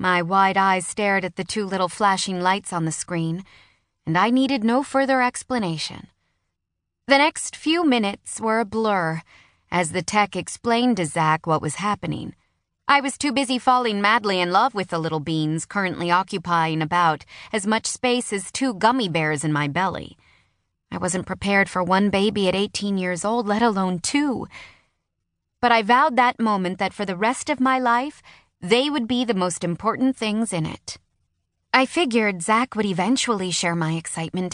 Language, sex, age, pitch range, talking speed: English, female, 30-49, 175-230 Hz, 175 wpm